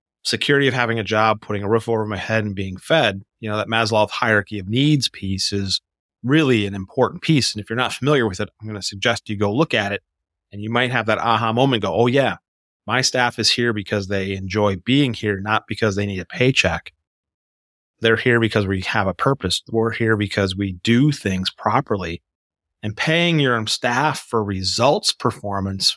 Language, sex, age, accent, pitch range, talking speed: English, male, 30-49, American, 100-125 Hz, 205 wpm